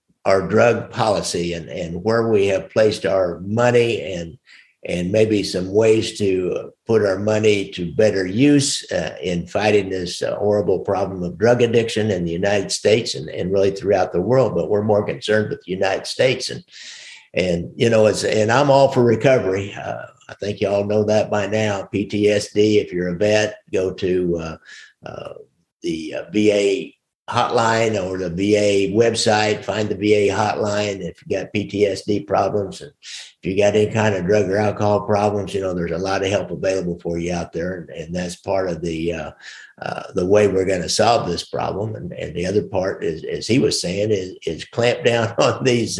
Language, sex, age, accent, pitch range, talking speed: English, male, 50-69, American, 95-115 Hz, 195 wpm